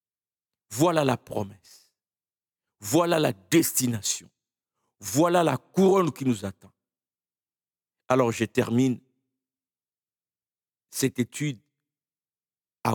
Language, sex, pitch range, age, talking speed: French, male, 115-170 Hz, 60-79, 85 wpm